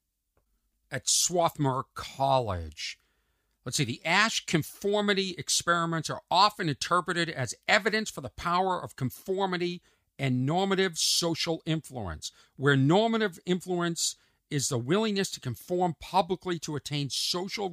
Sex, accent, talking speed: male, American, 120 wpm